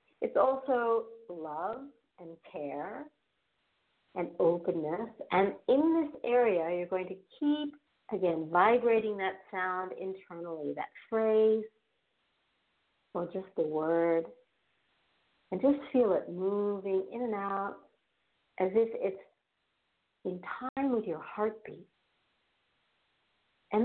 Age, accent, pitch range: 50-69, American, 175-235 Hz